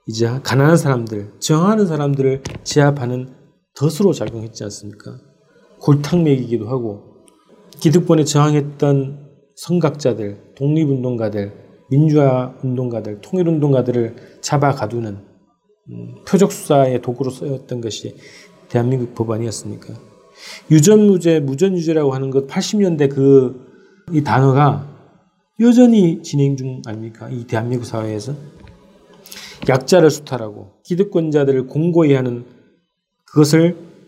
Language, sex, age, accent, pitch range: Korean, male, 40-59, native, 125-170 Hz